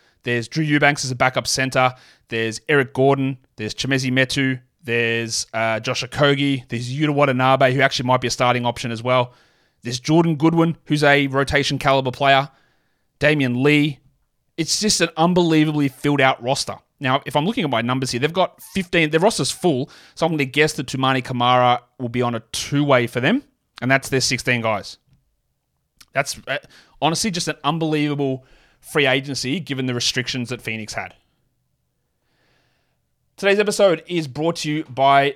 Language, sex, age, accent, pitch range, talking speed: English, male, 30-49, Australian, 130-160 Hz, 170 wpm